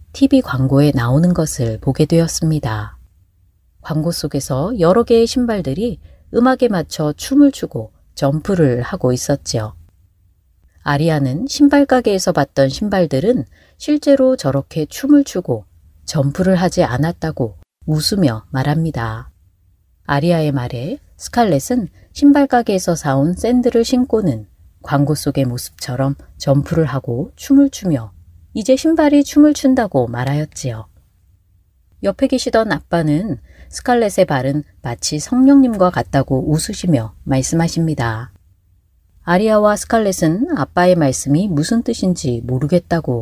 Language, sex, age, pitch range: Korean, female, 30-49, 120-200 Hz